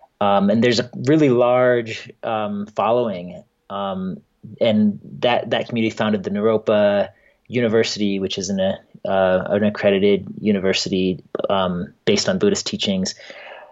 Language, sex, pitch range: English, male, 105-125 Hz